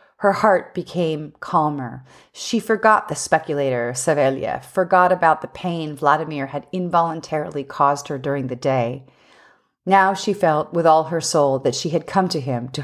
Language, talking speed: English, 165 wpm